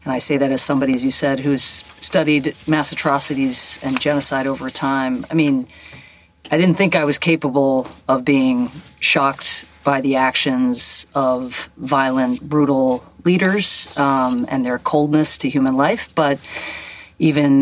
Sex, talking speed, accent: female, 150 wpm, American